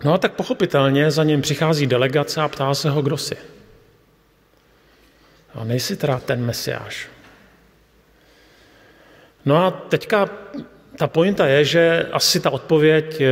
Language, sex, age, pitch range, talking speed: Slovak, male, 40-59, 130-160 Hz, 130 wpm